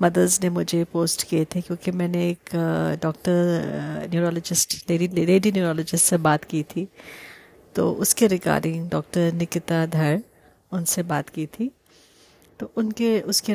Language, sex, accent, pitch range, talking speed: Hindi, female, native, 165-185 Hz, 135 wpm